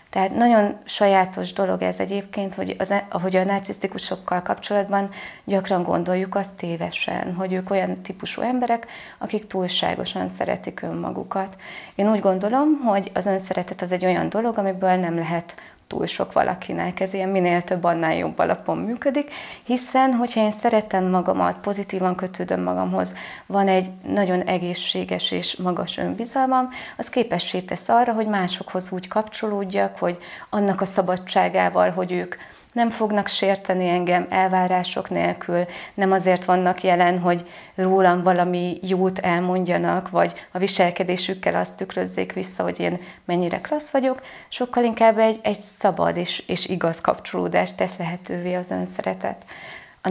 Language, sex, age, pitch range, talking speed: Hungarian, female, 30-49, 175-205 Hz, 140 wpm